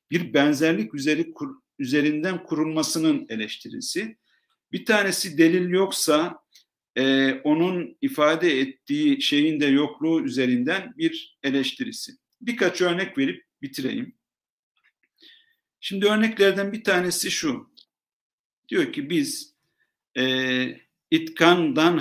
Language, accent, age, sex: Turkish, native, 50-69, male